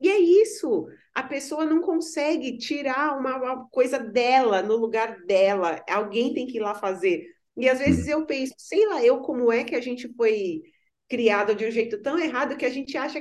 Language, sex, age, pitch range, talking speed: Portuguese, female, 30-49, 225-300 Hz, 205 wpm